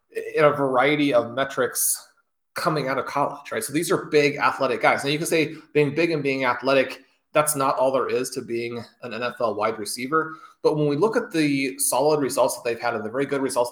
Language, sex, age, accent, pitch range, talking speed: English, male, 30-49, American, 120-150 Hz, 230 wpm